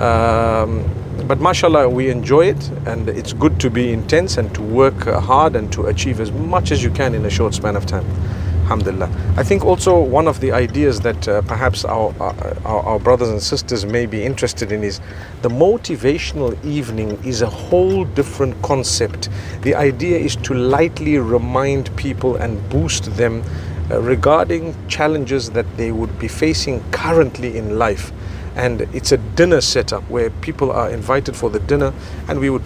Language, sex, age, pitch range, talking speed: English, male, 50-69, 100-130 Hz, 175 wpm